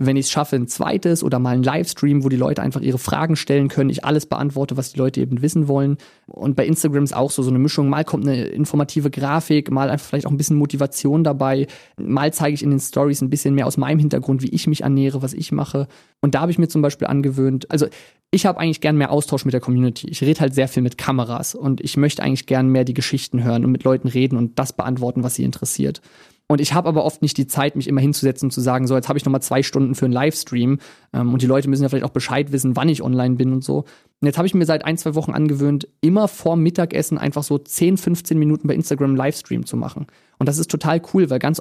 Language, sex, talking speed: German, male, 260 wpm